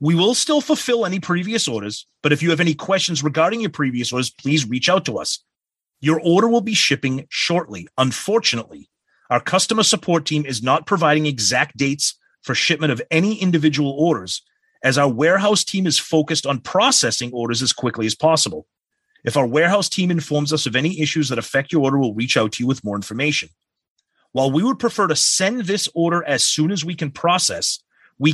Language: English